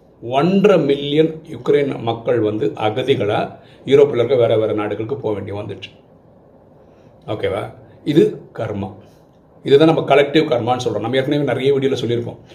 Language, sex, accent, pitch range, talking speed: Tamil, male, native, 115-155 Hz, 55 wpm